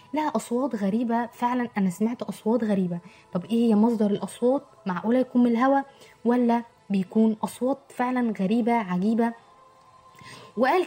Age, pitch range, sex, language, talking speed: 20-39, 195-245 Hz, female, Arabic, 135 wpm